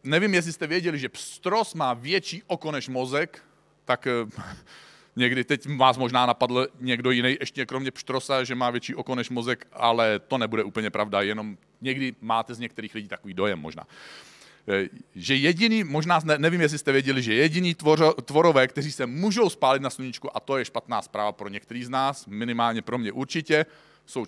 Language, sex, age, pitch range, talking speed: Czech, male, 40-59, 120-155 Hz, 185 wpm